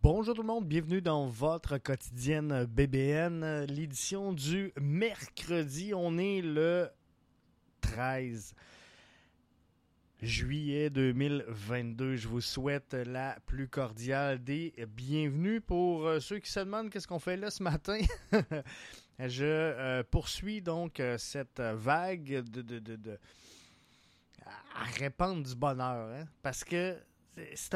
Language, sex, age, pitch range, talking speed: French, male, 20-39, 125-160 Hz, 110 wpm